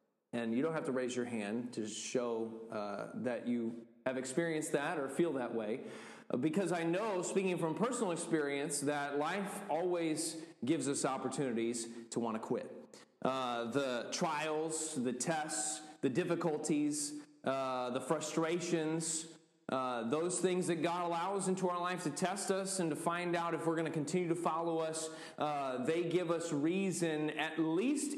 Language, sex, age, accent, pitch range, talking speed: English, male, 30-49, American, 135-170 Hz, 165 wpm